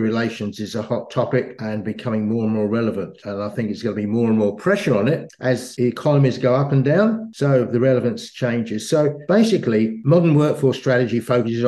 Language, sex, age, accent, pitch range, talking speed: English, male, 60-79, British, 110-135 Hz, 210 wpm